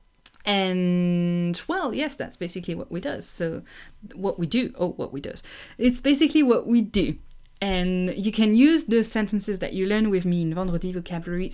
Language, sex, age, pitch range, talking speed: English, female, 20-39, 175-235 Hz, 180 wpm